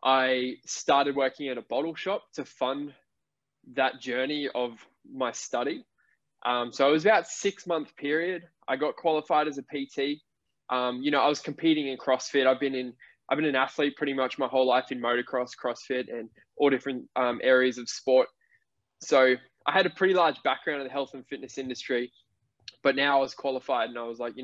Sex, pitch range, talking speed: male, 125-145 Hz, 200 wpm